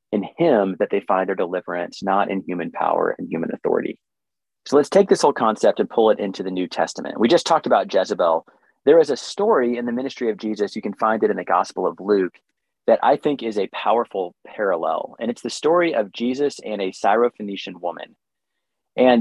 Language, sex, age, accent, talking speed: English, male, 30-49, American, 210 wpm